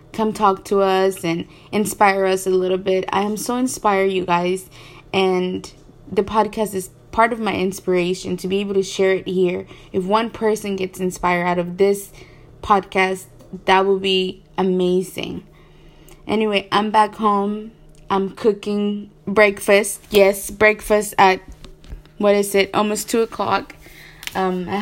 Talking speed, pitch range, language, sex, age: 145 wpm, 185-210 Hz, English, female, 20-39